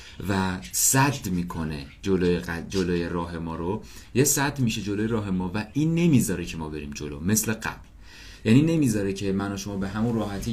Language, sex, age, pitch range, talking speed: English, male, 30-49, 95-125 Hz, 180 wpm